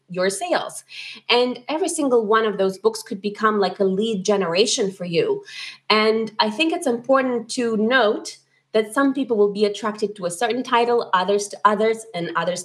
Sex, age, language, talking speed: female, 20-39, English, 185 wpm